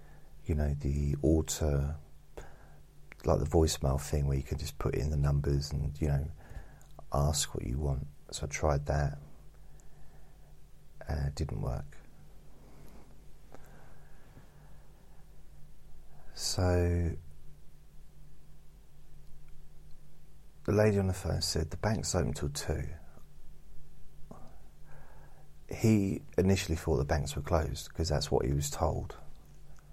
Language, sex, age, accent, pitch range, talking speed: English, male, 40-59, British, 75-85 Hz, 110 wpm